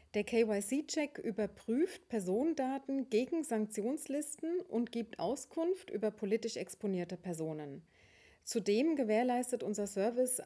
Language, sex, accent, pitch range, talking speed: German, female, German, 195-245 Hz, 100 wpm